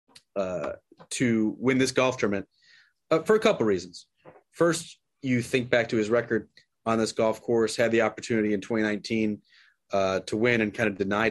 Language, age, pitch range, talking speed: English, 30-49, 100-115 Hz, 185 wpm